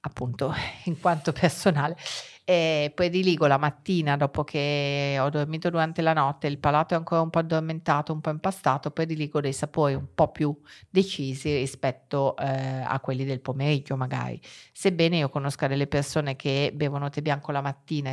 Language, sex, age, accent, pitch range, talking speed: Italian, female, 40-59, native, 140-165 Hz, 170 wpm